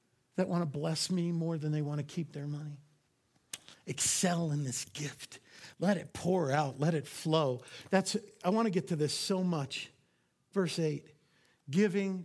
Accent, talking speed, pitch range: American, 175 wpm, 160-240 Hz